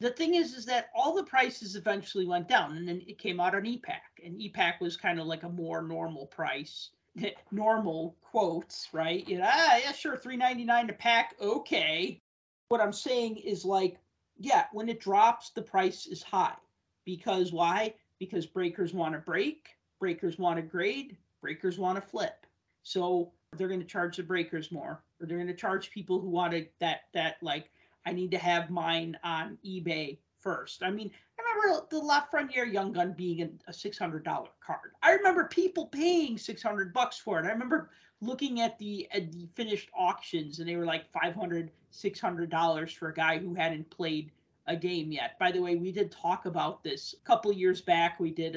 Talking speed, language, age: 185 wpm, English, 40-59